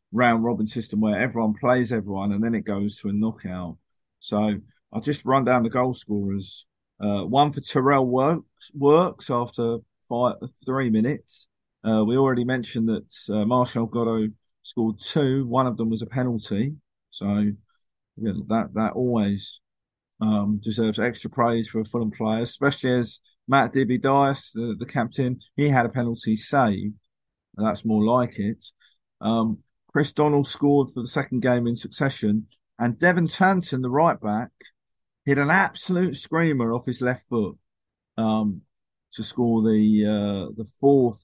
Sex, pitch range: male, 110-135 Hz